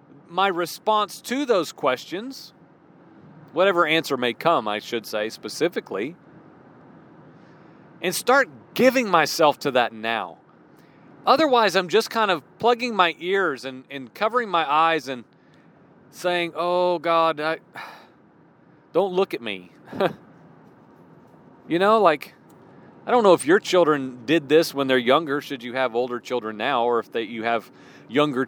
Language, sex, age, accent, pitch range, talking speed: English, male, 40-59, American, 130-180 Hz, 140 wpm